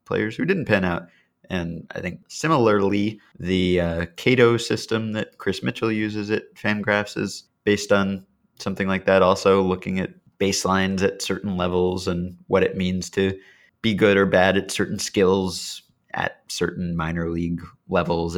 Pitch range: 85-105 Hz